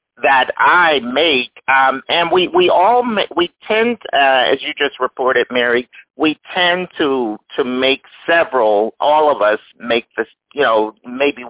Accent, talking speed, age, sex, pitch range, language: American, 160 wpm, 50-69, male, 130-195 Hz, English